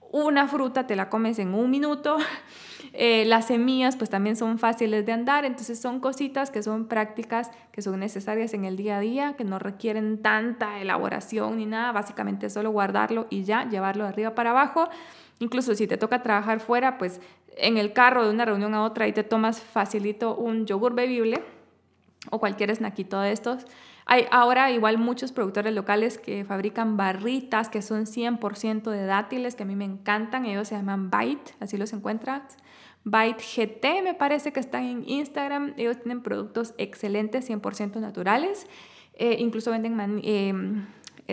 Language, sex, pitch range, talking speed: Spanish, female, 210-250 Hz, 175 wpm